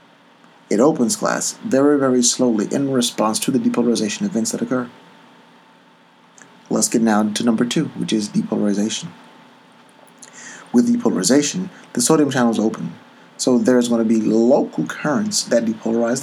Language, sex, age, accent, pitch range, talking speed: English, male, 30-49, American, 110-135 Hz, 140 wpm